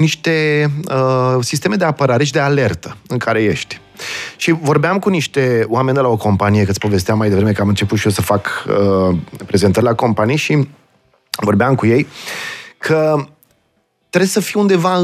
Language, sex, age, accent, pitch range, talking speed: Romanian, male, 30-49, native, 110-155 Hz, 170 wpm